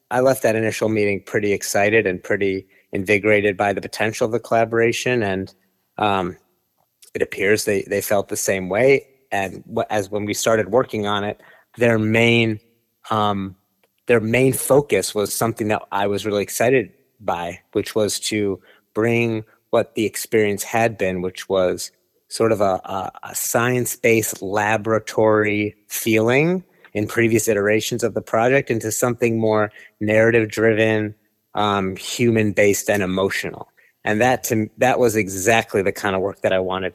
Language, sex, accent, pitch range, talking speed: English, male, American, 100-115 Hz, 155 wpm